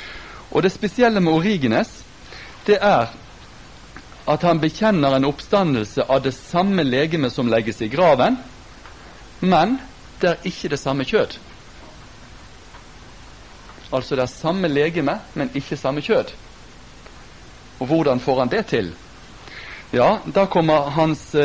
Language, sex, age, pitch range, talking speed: Danish, male, 60-79, 120-165 Hz, 130 wpm